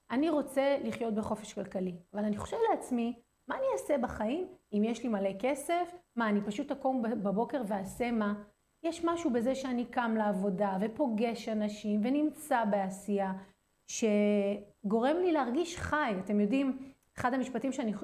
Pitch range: 210-270 Hz